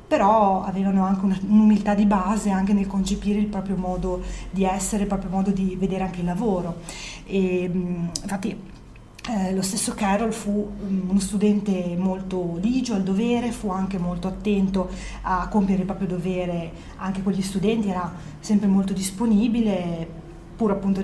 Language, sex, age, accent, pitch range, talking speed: Italian, female, 30-49, native, 185-210 Hz, 155 wpm